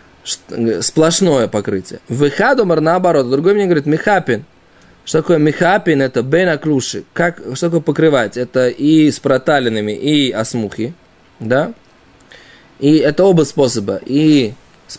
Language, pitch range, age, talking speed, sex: Russian, 130-175 Hz, 20-39, 115 wpm, male